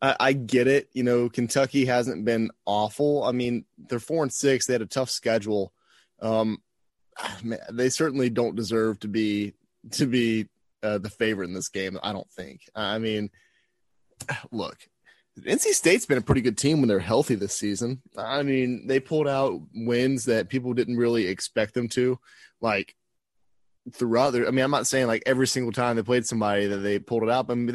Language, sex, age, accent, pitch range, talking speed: English, male, 20-39, American, 110-130 Hz, 195 wpm